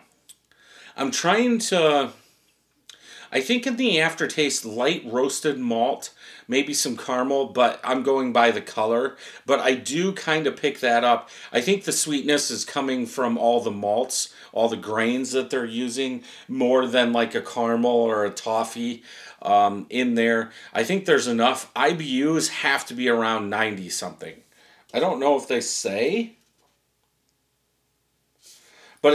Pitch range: 115-150 Hz